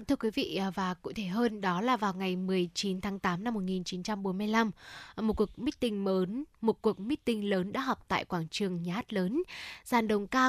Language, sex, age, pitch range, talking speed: Vietnamese, female, 10-29, 195-245 Hz, 195 wpm